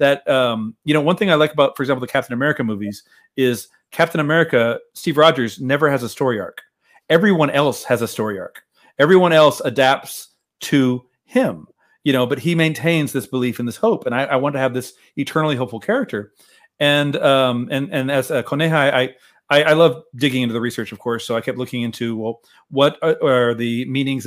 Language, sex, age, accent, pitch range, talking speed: English, male, 40-59, American, 120-150 Hz, 210 wpm